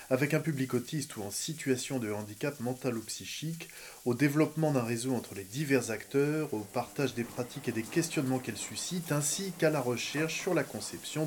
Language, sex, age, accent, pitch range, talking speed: French, male, 20-39, French, 110-145 Hz, 190 wpm